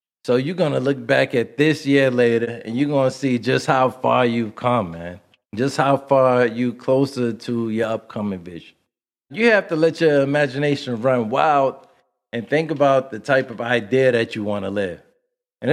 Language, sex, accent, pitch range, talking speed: English, male, American, 110-140 Hz, 195 wpm